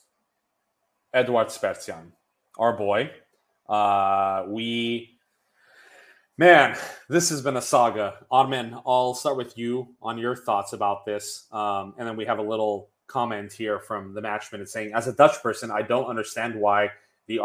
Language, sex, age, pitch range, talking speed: English, male, 30-49, 105-125 Hz, 150 wpm